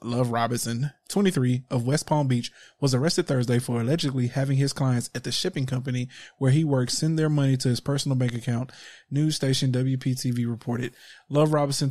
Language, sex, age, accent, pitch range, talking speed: English, male, 20-39, American, 125-145 Hz, 180 wpm